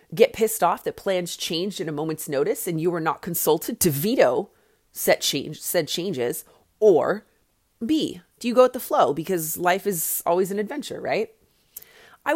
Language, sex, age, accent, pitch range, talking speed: English, female, 30-49, American, 170-250 Hz, 180 wpm